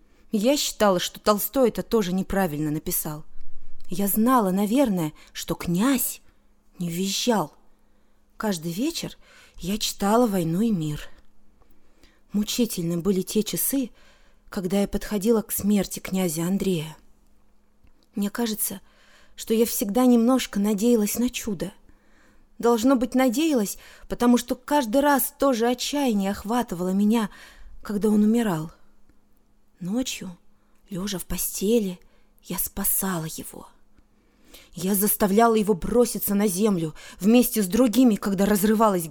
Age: 20-39